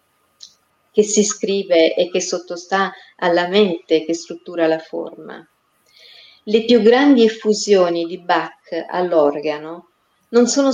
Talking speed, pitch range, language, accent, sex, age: 115 wpm, 170-215 Hz, Italian, native, female, 40-59